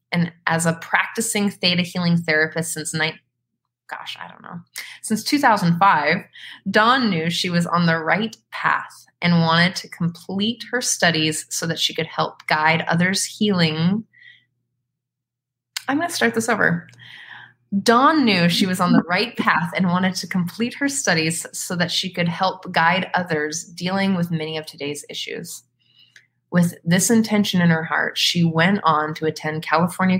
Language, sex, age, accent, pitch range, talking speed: English, female, 20-39, American, 155-190 Hz, 165 wpm